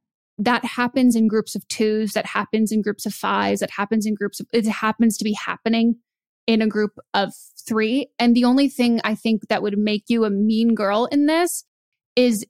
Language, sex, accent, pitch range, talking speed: English, female, American, 215-235 Hz, 205 wpm